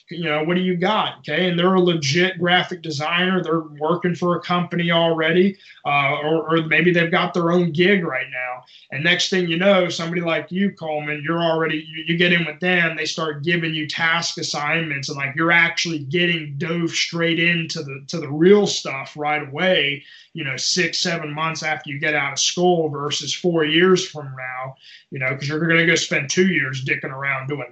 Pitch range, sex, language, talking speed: 150-185 Hz, male, English, 210 wpm